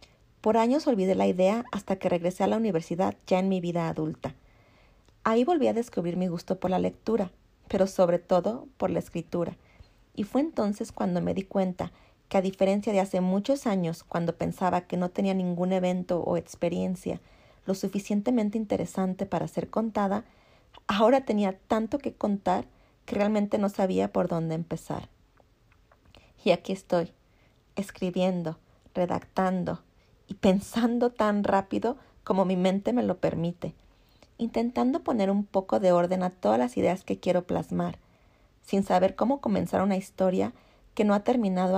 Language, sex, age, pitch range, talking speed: Spanish, female, 40-59, 180-215 Hz, 160 wpm